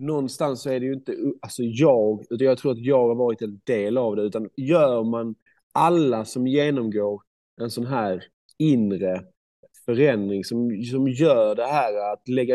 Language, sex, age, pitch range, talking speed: Swedish, male, 30-49, 105-130 Hz, 175 wpm